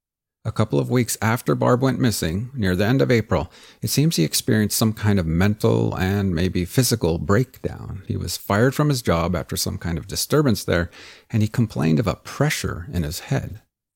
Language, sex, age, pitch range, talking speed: English, male, 50-69, 90-115 Hz, 200 wpm